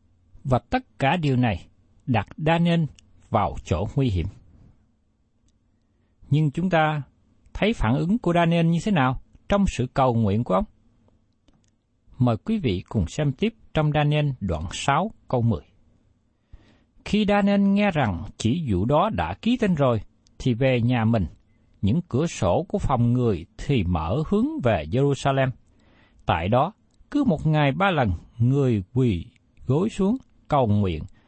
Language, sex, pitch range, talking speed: Vietnamese, male, 105-180 Hz, 150 wpm